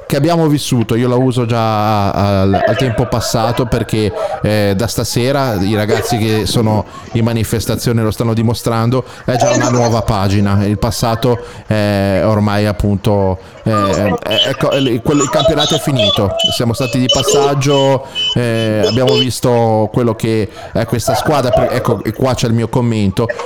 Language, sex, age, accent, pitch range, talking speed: Italian, male, 30-49, native, 110-130 Hz, 155 wpm